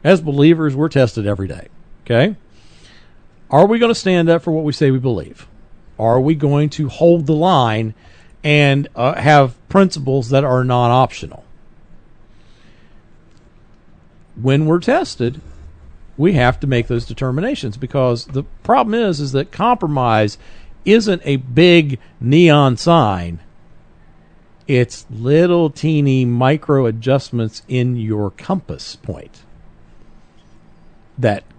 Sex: male